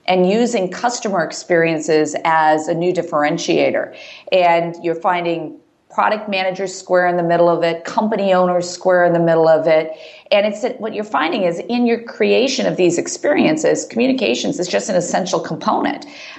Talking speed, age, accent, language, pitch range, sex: 170 wpm, 50-69, American, English, 160-210 Hz, female